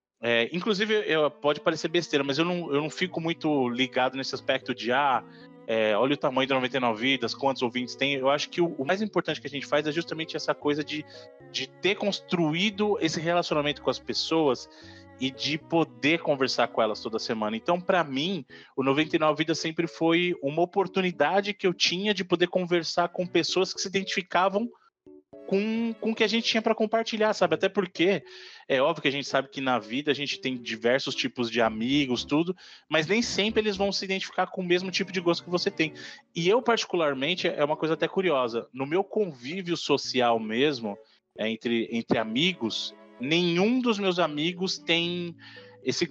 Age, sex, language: 20-39, male, Portuguese